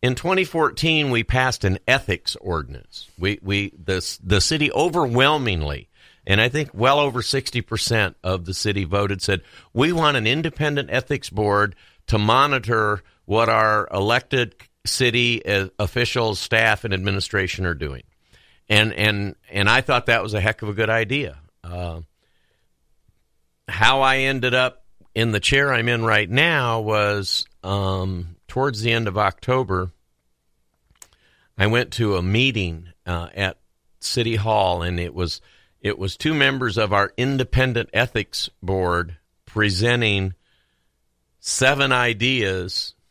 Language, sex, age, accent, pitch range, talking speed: English, male, 50-69, American, 90-120 Hz, 140 wpm